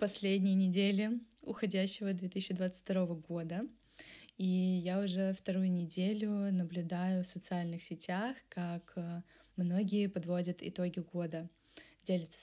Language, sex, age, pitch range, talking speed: Russian, female, 20-39, 180-215 Hz, 95 wpm